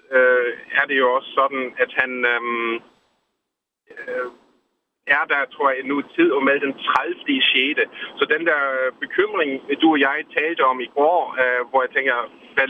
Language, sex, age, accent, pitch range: Danish, male, 30-49, native, 130-165 Hz